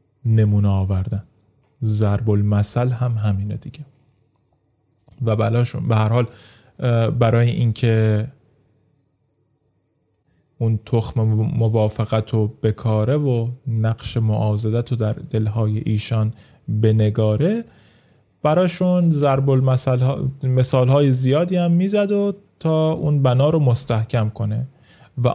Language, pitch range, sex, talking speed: English, 110-150 Hz, male, 105 wpm